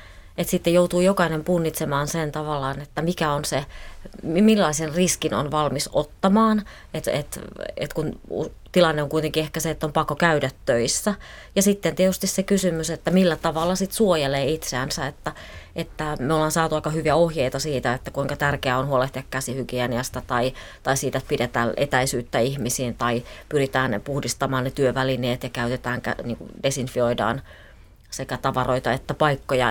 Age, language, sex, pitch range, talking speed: 30-49, Finnish, female, 130-175 Hz, 155 wpm